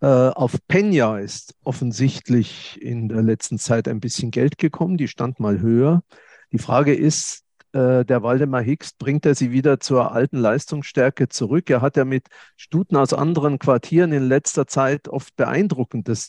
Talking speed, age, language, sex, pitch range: 160 wpm, 50-69, German, male, 120-145 Hz